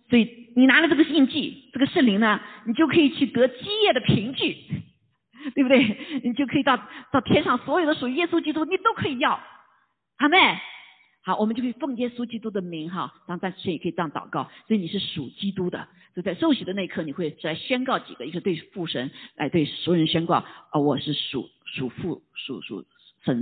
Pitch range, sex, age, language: 165-255 Hz, female, 50-69, Chinese